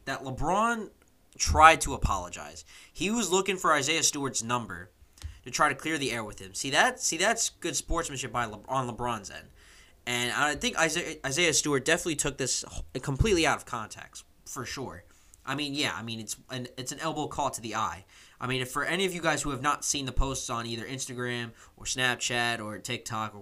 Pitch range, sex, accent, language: 110-145 Hz, male, American, English